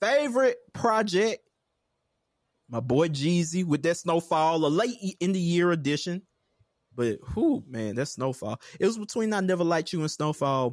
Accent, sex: American, male